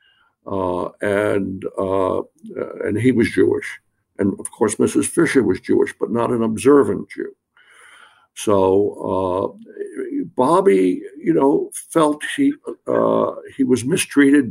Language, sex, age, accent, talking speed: English, male, 60-79, American, 125 wpm